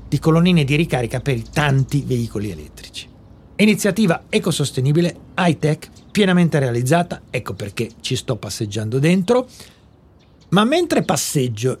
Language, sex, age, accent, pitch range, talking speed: Italian, male, 40-59, native, 125-175 Hz, 115 wpm